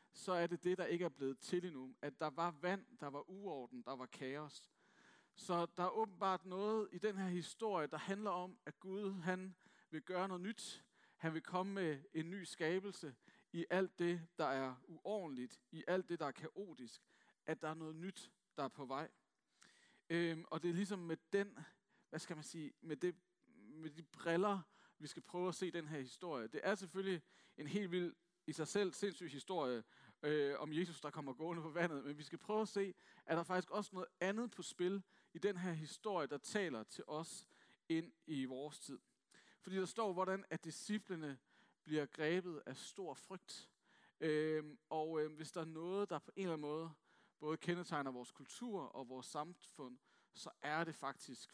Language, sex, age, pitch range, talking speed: Danish, male, 40-59, 150-190 Hz, 200 wpm